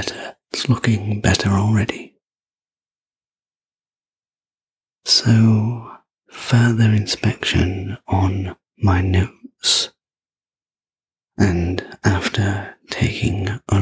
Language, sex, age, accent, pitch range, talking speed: English, male, 30-49, British, 95-110 Hz, 60 wpm